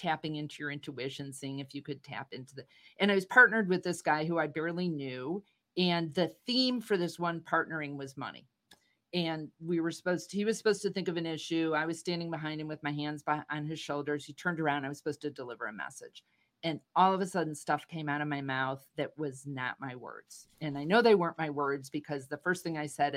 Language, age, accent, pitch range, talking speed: English, 50-69, American, 145-180 Hz, 245 wpm